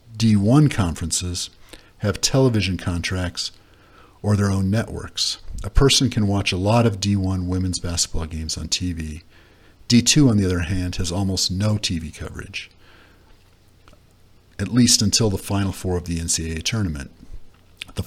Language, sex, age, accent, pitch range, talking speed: English, male, 50-69, American, 90-105 Hz, 145 wpm